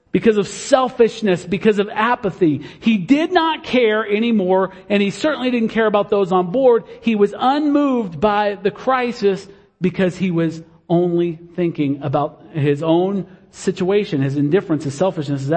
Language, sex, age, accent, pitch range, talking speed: English, male, 50-69, American, 155-210 Hz, 155 wpm